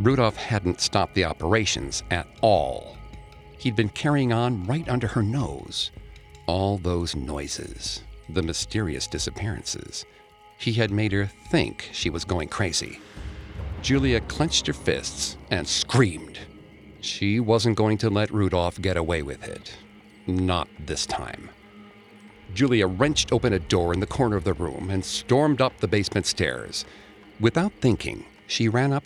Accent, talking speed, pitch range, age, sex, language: American, 145 wpm, 85-115 Hz, 50-69, male, English